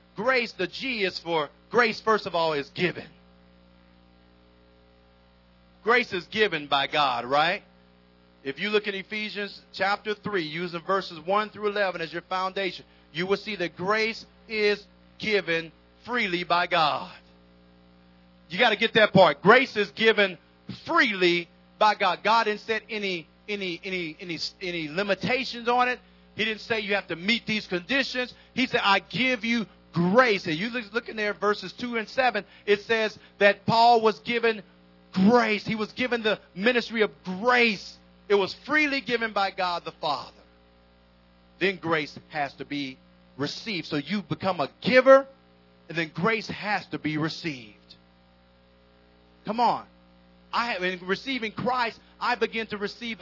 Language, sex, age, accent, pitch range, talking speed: English, male, 40-59, American, 140-220 Hz, 160 wpm